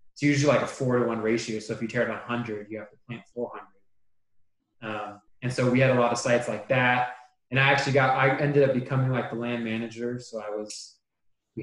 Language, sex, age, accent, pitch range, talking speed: English, male, 20-39, American, 110-125 Hz, 250 wpm